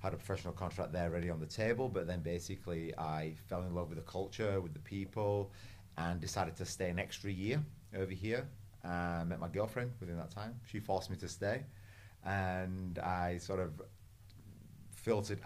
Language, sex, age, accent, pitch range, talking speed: English, male, 30-49, British, 80-100 Hz, 190 wpm